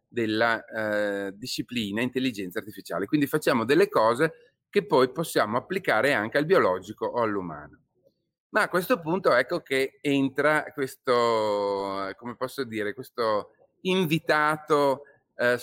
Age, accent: 30-49, native